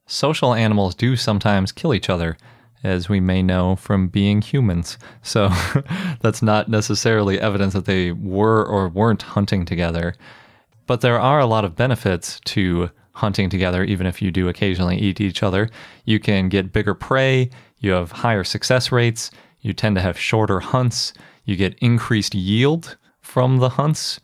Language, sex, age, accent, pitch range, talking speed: English, male, 30-49, American, 95-115 Hz, 165 wpm